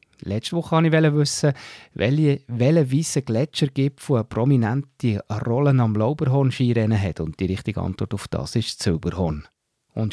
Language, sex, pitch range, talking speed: German, male, 105-140 Hz, 150 wpm